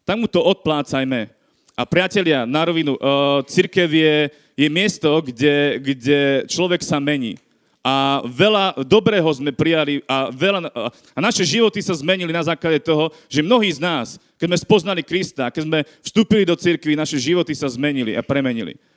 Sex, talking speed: male, 160 wpm